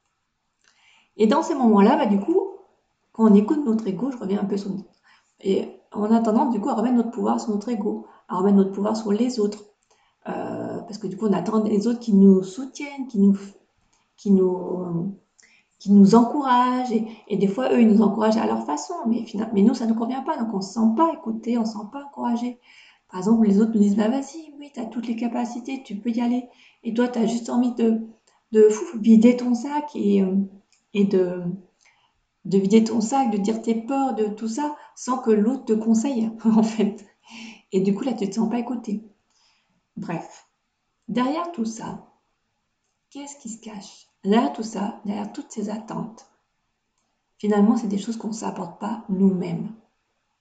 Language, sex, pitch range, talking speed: French, female, 205-240 Hz, 205 wpm